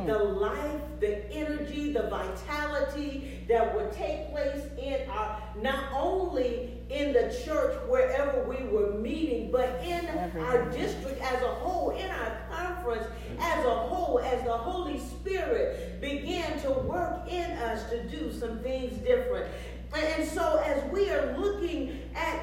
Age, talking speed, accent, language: 50-69, 145 wpm, American, English